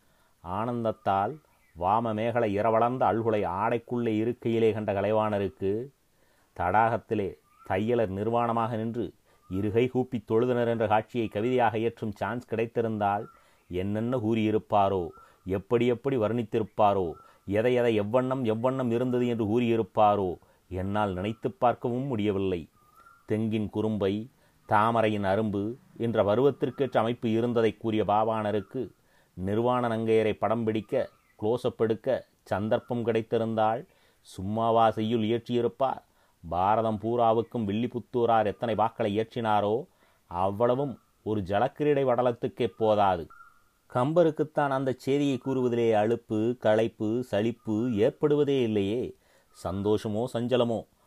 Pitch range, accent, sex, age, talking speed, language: 105-125 Hz, native, male, 30-49, 95 wpm, Tamil